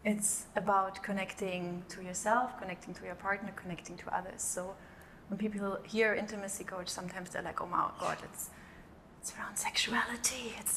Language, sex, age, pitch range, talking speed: English, female, 30-49, 185-205 Hz, 160 wpm